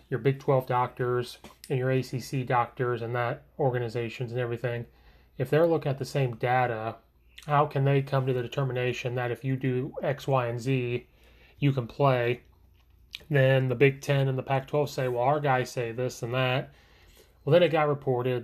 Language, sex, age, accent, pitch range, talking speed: English, male, 30-49, American, 120-135 Hz, 190 wpm